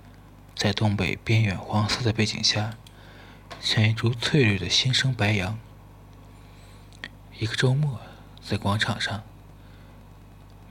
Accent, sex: native, male